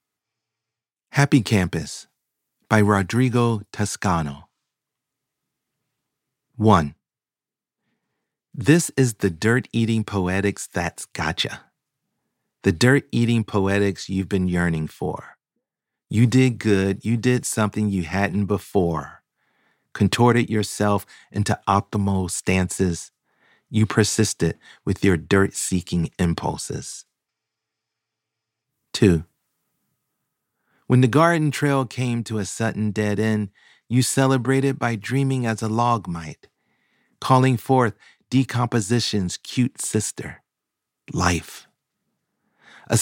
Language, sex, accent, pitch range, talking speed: English, male, American, 100-130 Hz, 90 wpm